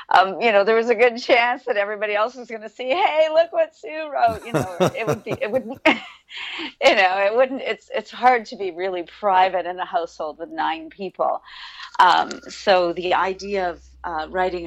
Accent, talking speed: American, 210 wpm